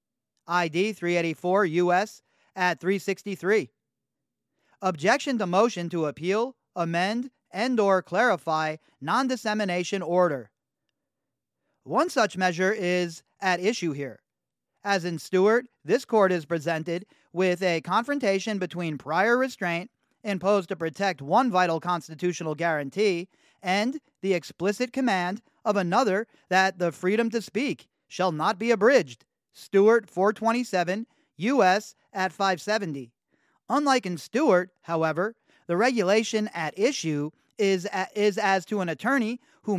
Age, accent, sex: 40-59, American, male